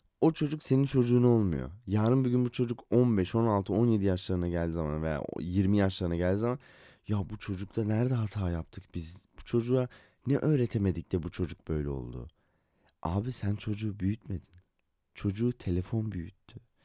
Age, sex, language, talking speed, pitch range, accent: 30-49, male, Turkish, 155 wpm, 85-115 Hz, native